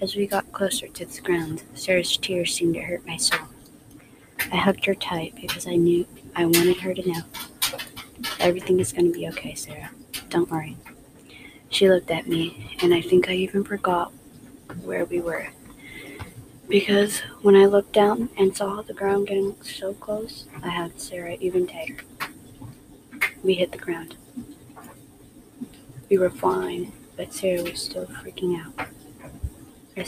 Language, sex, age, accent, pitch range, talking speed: English, female, 20-39, American, 170-195 Hz, 160 wpm